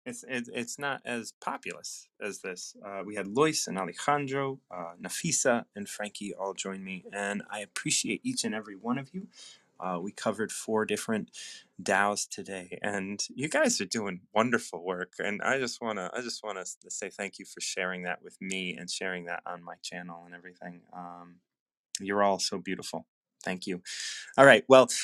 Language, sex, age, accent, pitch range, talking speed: English, male, 20-39, American, 95-140 Hz, 180 wpm